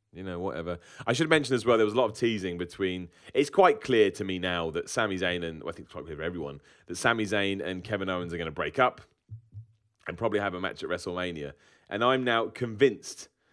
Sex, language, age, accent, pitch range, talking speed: male, English, 30-49, British, 90-125 Hz, 245 wpm